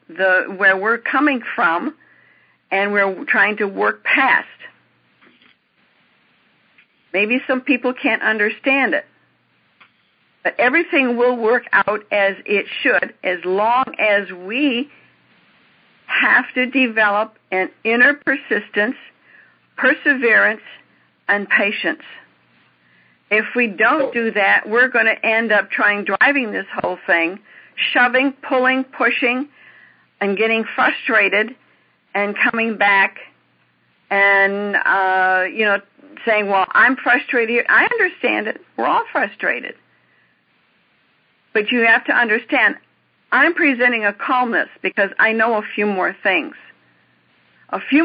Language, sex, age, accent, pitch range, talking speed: English, female, 50-69, American, 200-255 Hz, 115 wpm